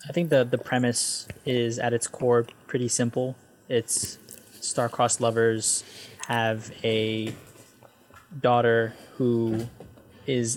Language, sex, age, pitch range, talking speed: English, male, 10-29, 110-125 Hz, 110 wpm